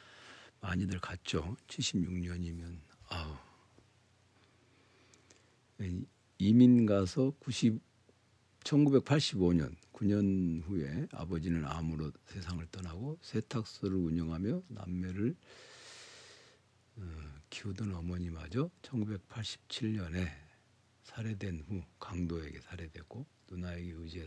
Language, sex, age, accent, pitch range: Korean, male, 60-79, native, 85-120 Hz